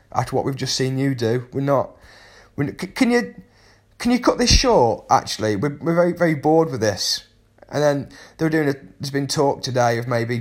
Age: 30-49